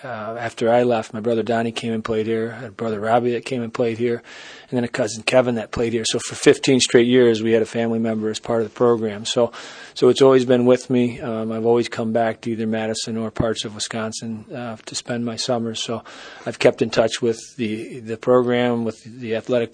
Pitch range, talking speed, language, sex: 110-120 Hz, 245 wpm, English, male